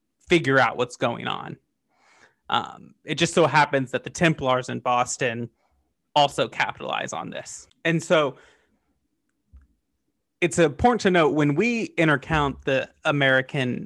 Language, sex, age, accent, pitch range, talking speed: English, male, 30-49, American, 130-165 Hz, 130 wpm